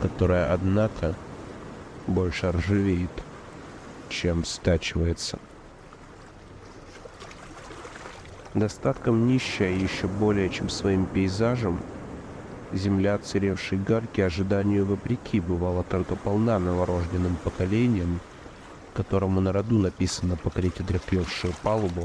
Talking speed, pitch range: 85 wpm, 90-105 Hz